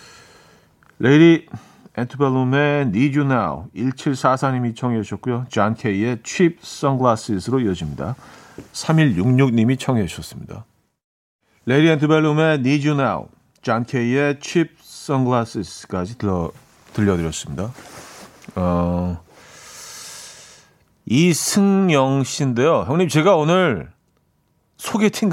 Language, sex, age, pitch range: Korean, male, 40-59, 115-160 Hz